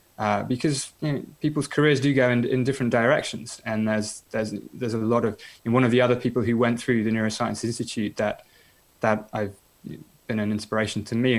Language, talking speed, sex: English, 205 wpm, male